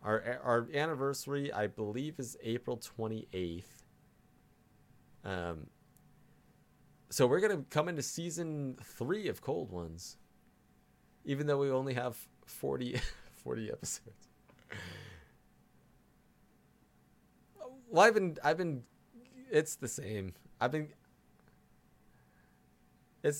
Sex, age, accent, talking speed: male, 20-39, American, 85 wpm